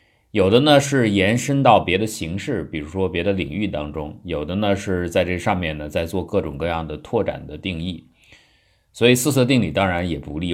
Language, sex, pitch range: Chinese, male, 85-120 Hz